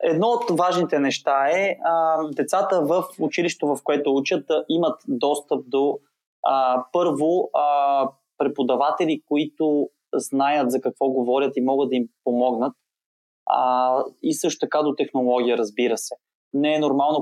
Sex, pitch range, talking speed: male, 130-155 Hz, 140 wpm